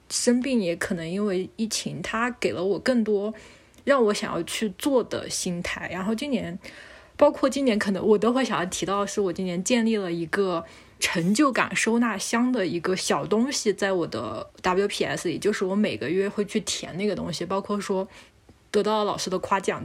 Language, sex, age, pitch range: Chinese, female, 20-39, 185-240 Hz